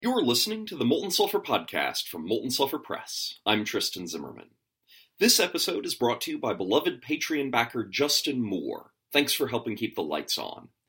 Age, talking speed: 30-49, 180 wpm